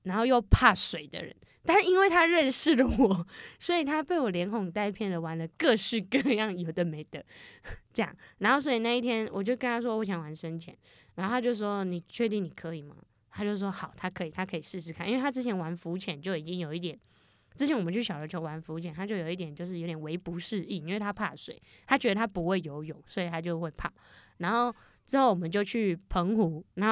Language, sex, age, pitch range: Chinese, female, 10-29, 170-240 Hz